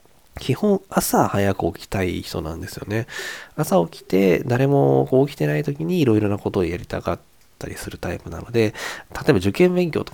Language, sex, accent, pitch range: Japanese, male, native, 95-135 Hz